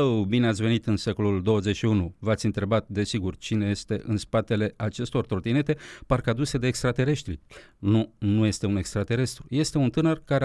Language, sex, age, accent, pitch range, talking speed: Romanian, male, 40-59, native, 105-145 Hz, 155 wpm